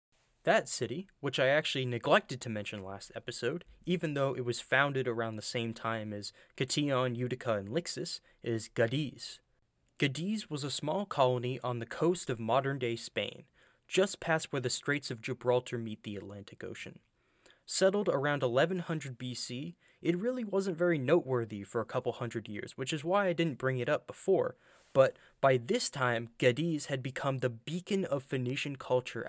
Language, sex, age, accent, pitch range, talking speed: English, male, 20-39, American, 120-160 Hz, 170 wpm